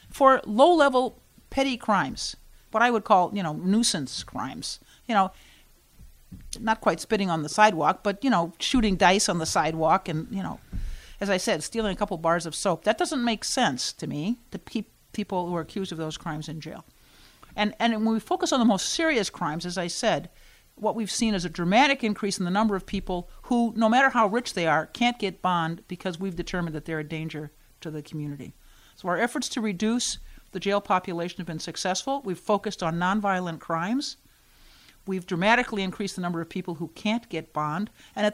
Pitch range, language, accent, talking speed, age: 170-215 Hz, English, American, 205 wpm, 50-69